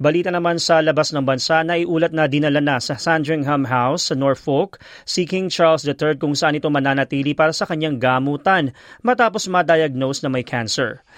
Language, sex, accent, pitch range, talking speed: Filipino, male, native, 145-175 Hz, 175 wpm